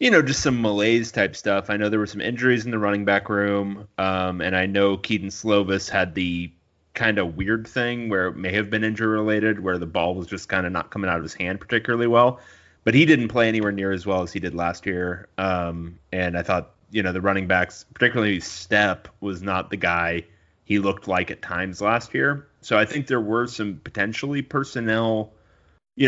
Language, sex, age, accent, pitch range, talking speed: English, male, 30-49, American, 90-110 Hz, 220 wpm